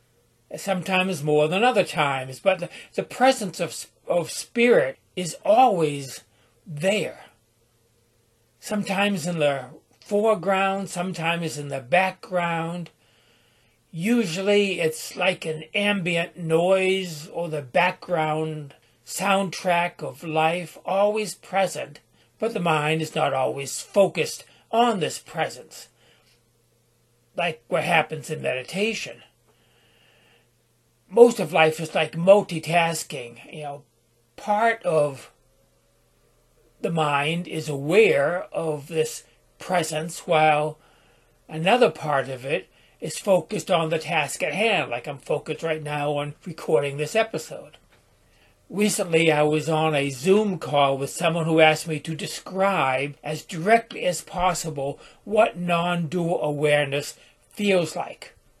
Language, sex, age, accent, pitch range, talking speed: English, male, 60-79, American, 145-190 Hz, 115 wpm